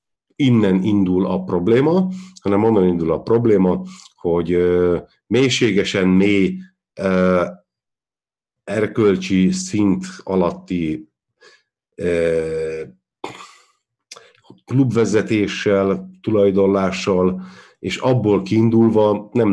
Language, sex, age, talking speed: Hungarian, male, 50-69, 75 wpm